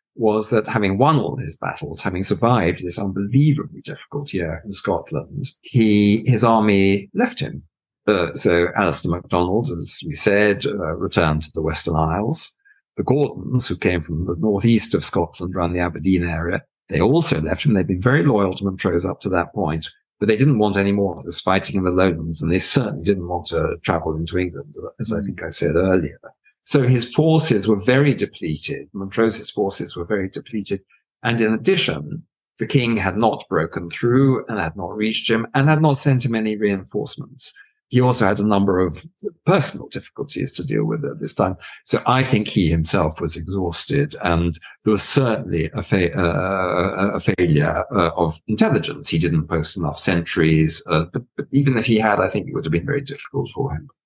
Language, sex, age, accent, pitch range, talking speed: English, male, 50-69, British, 85-115 Hz, 190 wpm